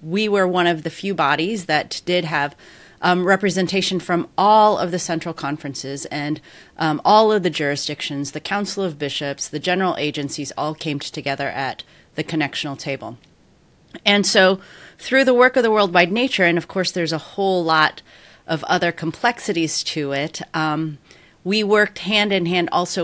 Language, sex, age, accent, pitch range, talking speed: English, female, 30-49, American, 150-190 Hz, 165 wpm